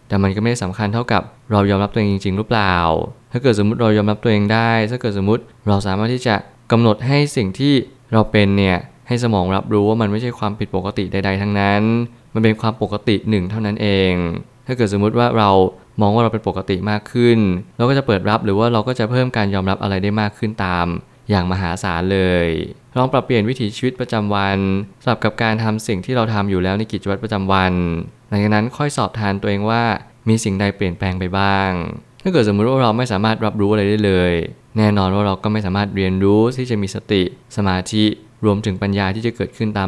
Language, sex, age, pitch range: Thai, male, 20-39, 95-115 Hz